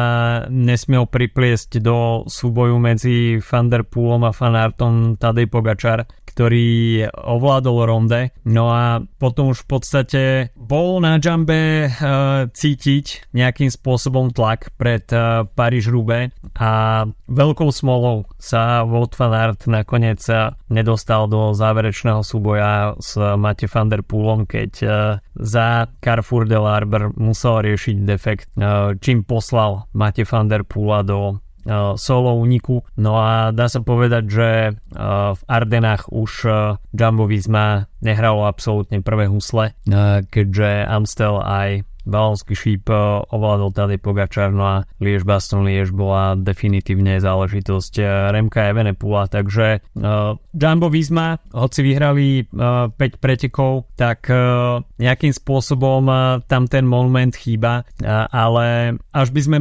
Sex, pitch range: male, 105-125 Hz